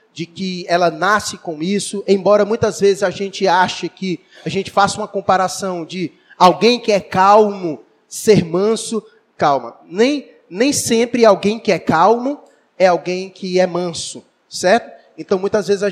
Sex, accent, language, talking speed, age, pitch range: male, Brazilian, Portuguese, 160 wpm, 20-39, 185-225 Hz